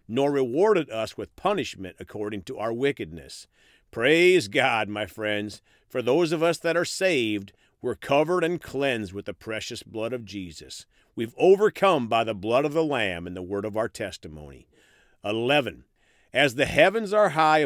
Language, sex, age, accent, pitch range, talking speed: English, male, 50-69, American, 105-160 Hz, 170 wpm